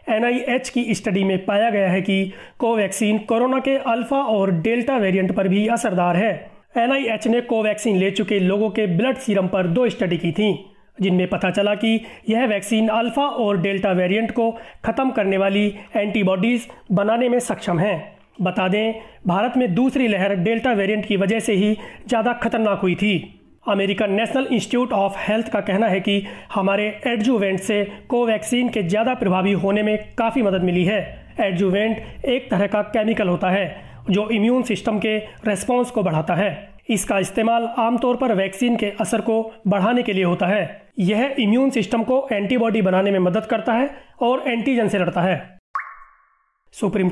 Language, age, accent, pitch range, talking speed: Hindi, 30-49, native, 195-230 Hz, 170 wpm